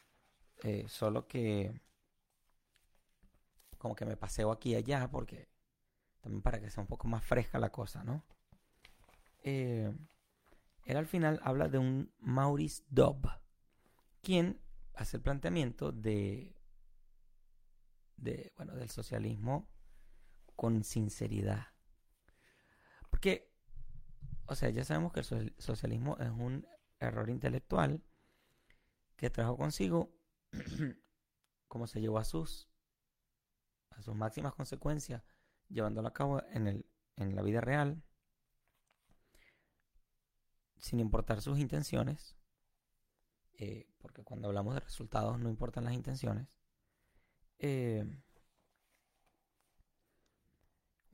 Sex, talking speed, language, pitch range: male, 105 wpm, Spanish, 110-135 Hz